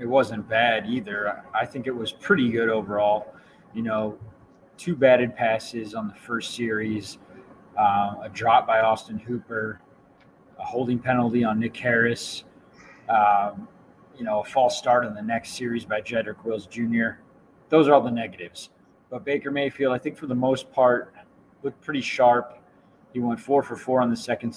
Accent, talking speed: American, 175 wpm